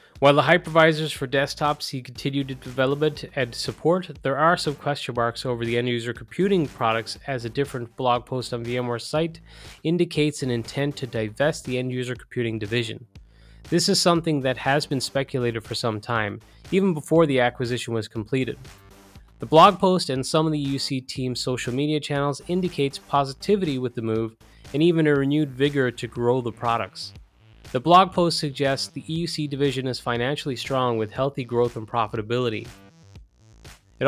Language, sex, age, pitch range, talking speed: English, male, 30-49, 120-145 Hz, 165 wpm